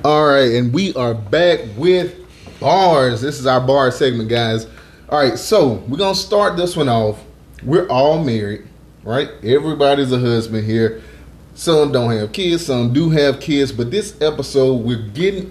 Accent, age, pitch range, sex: American, 30-49, 115-155 Hz, male